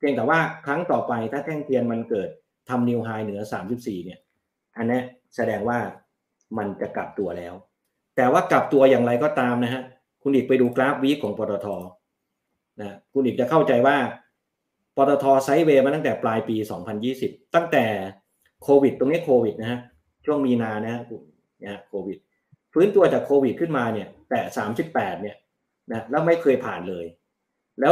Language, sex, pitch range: Thai, male, 110-140 Hz